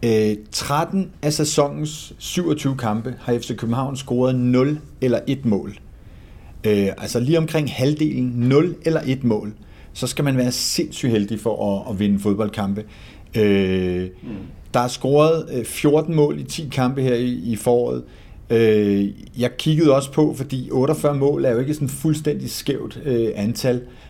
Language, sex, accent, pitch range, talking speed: Danish, male, native, 115-145 Hz, 140 wpm